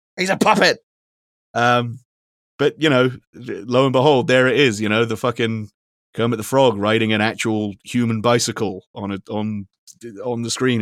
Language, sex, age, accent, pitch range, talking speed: English, male, 30-49, British, 100-115 Hz, 170 wpm